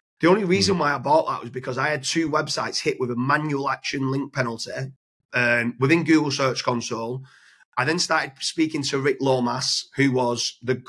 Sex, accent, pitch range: male, British, 130-160 Hz